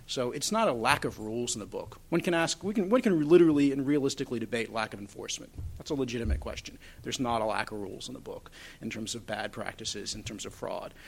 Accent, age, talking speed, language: American, 40-59, 250 wpm, English